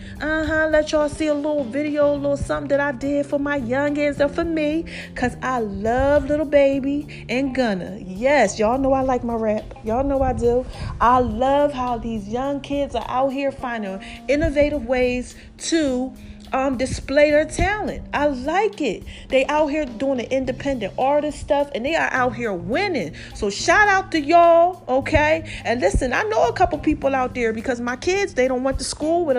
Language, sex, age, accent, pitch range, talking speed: English, female, 40-59, American, 255-315 Hz, 195 wpm